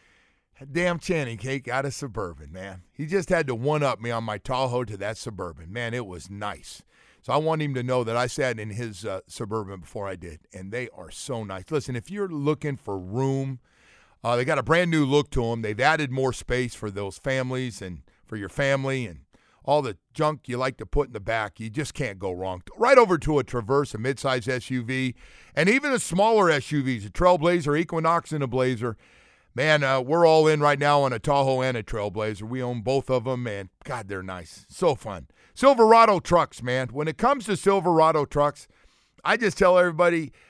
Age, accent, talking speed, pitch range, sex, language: 50-69, American, 210 wpm, 120-170 Hz, male, English